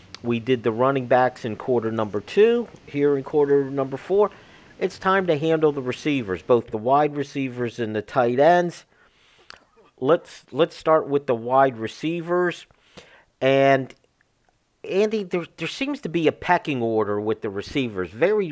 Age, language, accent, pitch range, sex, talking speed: 50-69, English, American, 125-165 Hz, male, 160 wpm